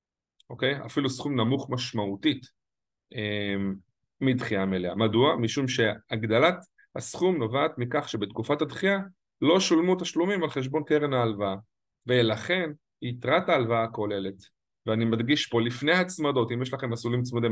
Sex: male